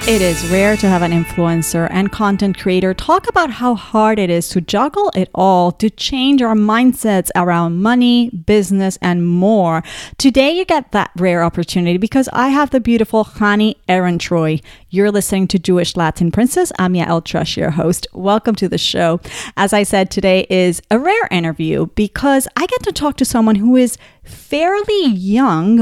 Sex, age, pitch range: female, 30-49, 180-235 Hz